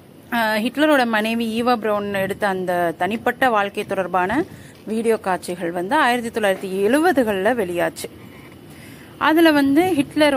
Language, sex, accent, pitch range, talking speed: Tamil, female, native, 185-255 Hz, 100 wpm